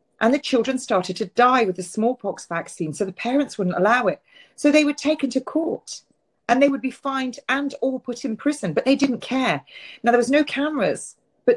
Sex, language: female, English